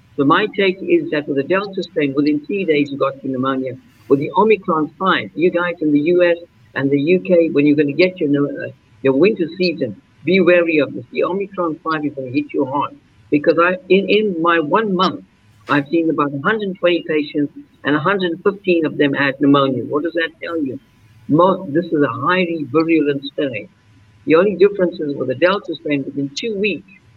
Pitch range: 140-175 Hz